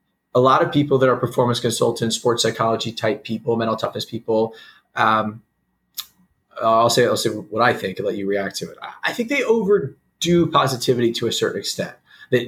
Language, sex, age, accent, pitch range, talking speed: English, male, 30-49, American, 115-135 Hz, 185 wpm